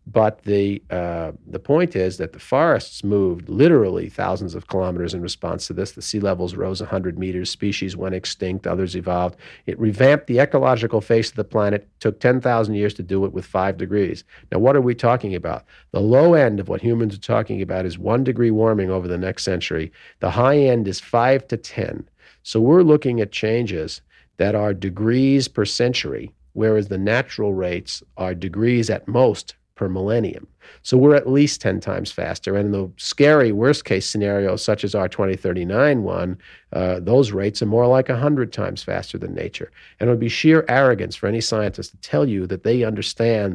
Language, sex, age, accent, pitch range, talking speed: English, male, 50-69, American, 95-125 Hz, 195 wpm